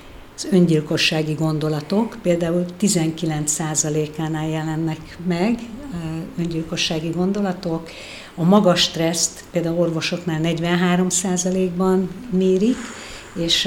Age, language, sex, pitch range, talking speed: 60-79, Hungarian, female, 160-185 Hz, 75 wpm